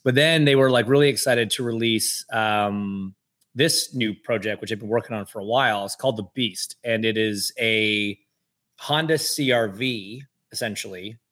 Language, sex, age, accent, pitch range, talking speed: English, male, 30-49, American, 105-125 Hz, 170 wpm